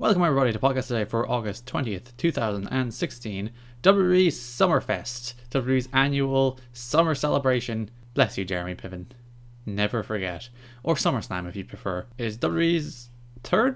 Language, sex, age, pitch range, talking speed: English, male, 20-39, 105-135 Hz, 125 wpm